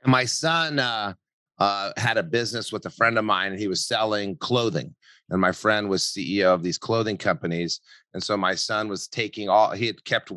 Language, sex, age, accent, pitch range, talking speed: English, male, 30-49, American, 110-135 Hz, 210 wpm